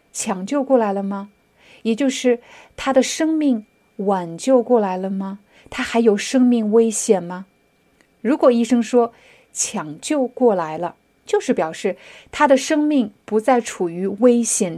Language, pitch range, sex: Chinese, 195-255 Hz, female